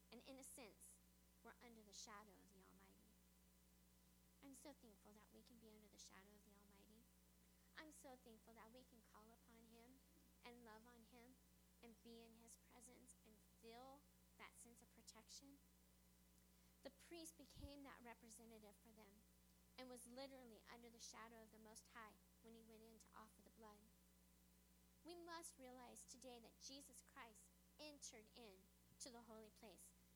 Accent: American